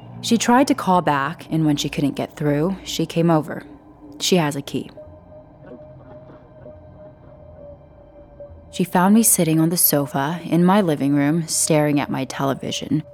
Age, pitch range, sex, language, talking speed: 20-39, 140-170 Hz, female, English, 150 wpm